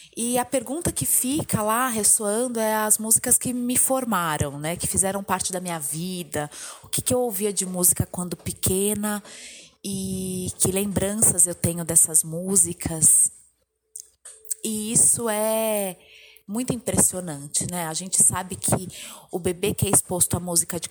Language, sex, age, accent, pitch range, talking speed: Portuguese, female, 20-39, Brazilian, 165-195 Hz, 155 wpm